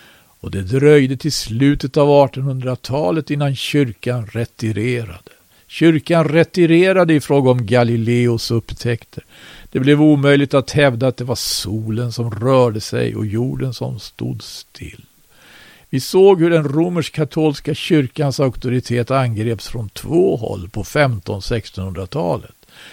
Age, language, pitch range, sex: 50-69, Swedish, 120-150 Hz, male